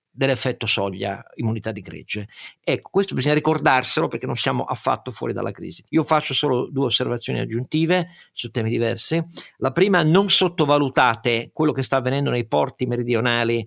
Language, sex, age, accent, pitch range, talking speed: Italian, male, 50-69, native, 115-160 Hz, 160 wpm